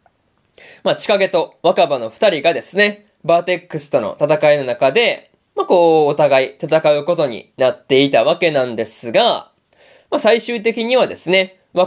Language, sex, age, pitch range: Japanese, male, 20-39, 145-200 Hz